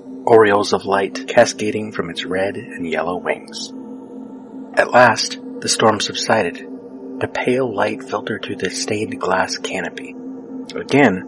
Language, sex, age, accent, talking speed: English, male, 30-49, American, 135 wpm